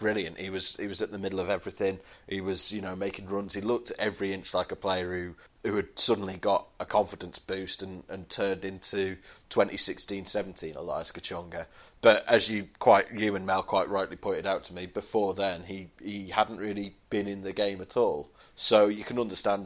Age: 30-49